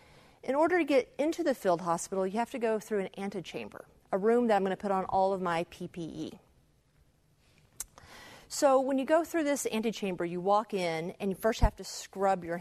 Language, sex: English, female